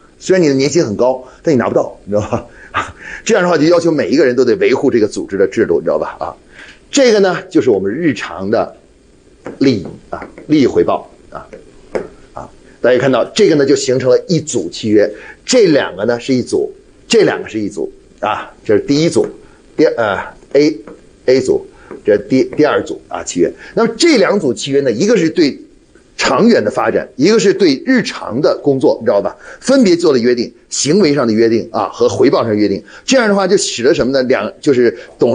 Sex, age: male, 30-49